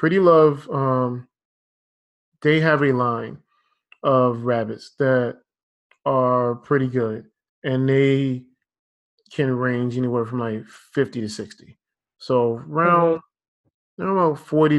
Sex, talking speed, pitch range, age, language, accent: male, 115 wpm, 125-145 Hz, 20-39, English, American